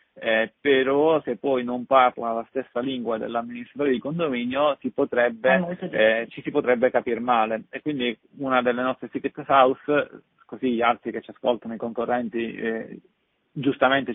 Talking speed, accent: 155 wpm, native